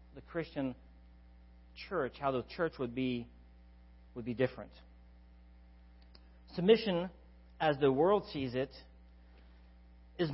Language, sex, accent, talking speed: English, male, American, 105 wpm